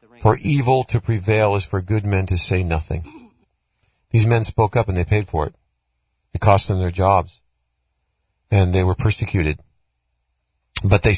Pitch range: 85-110 Hz